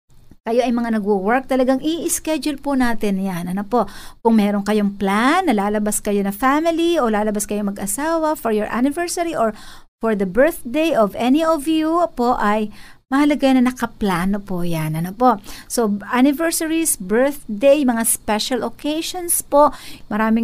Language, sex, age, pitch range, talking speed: Filipino, female, 50-69, 220-305 Hz, 155 wpm